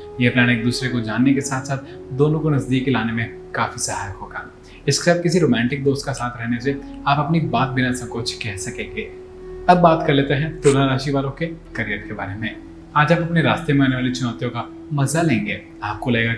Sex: male